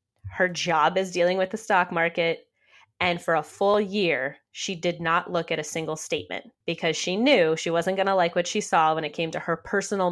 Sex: female